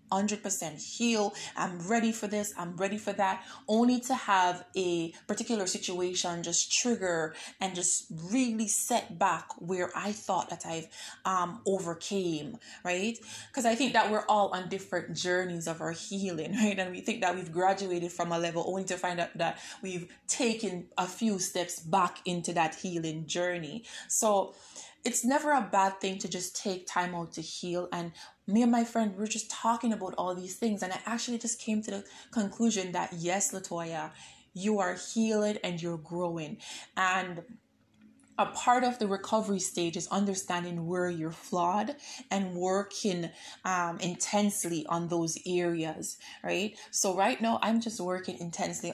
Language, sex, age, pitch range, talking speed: English, female, 20-39, 175-215 Hz, 170 wpm